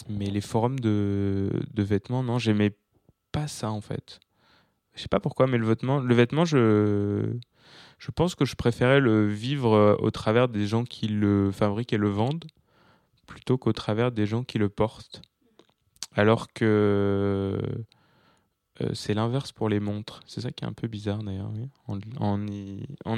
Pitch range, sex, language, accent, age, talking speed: 100-125 Hz, male, French, French, 20-39, 170 wpm